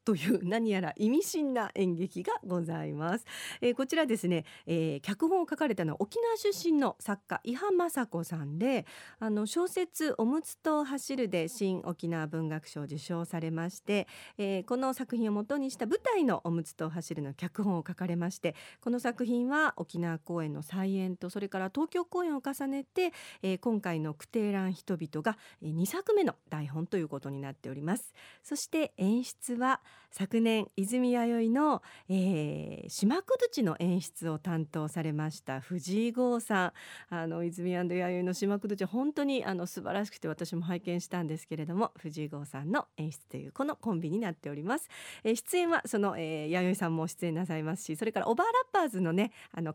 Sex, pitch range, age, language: female, 165-250 Hz, 40-59, Japanese